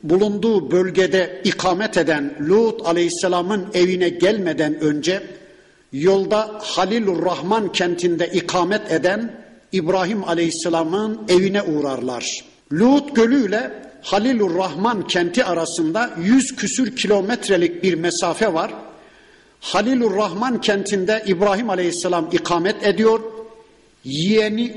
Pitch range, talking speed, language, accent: 175-220 Hz, 90 wpm, Turkish, native